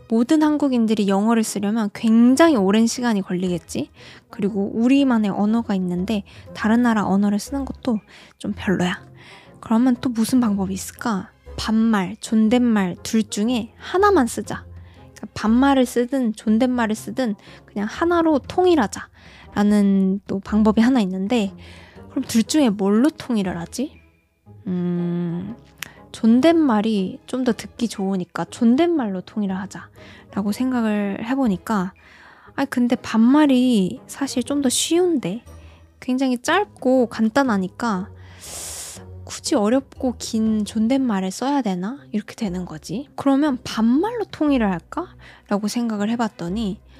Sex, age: female, 20-39